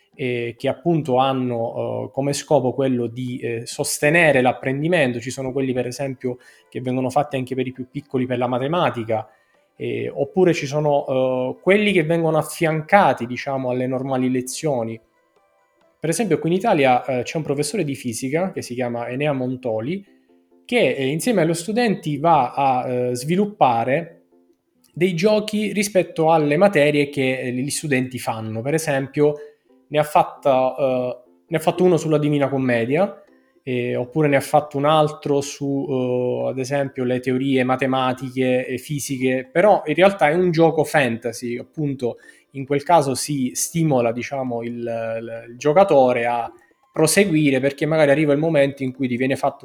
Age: 20-39